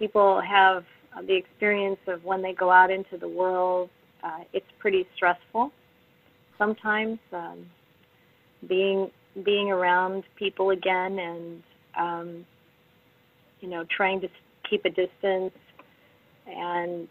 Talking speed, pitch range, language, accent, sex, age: 115 wpm, 175-195 Hz, English, American, female, 40-59